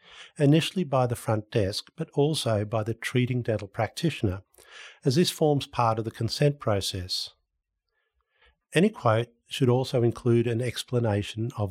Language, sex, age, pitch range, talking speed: English, male, 50-69, 105-130 Hz, 145 wpm